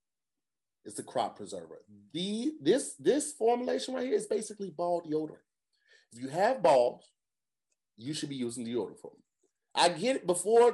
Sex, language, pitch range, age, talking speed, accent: male, English, 115-180 Hz, 30-49, 160 wpm, American